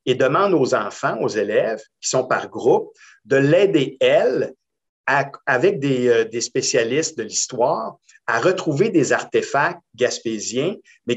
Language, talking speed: French, 140 wpm